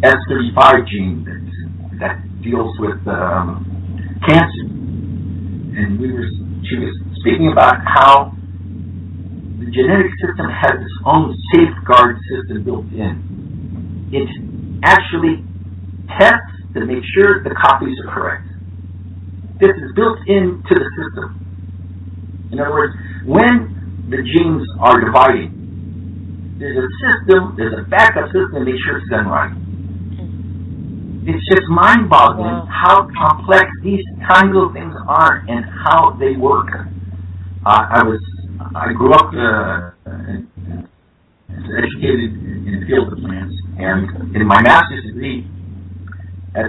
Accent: American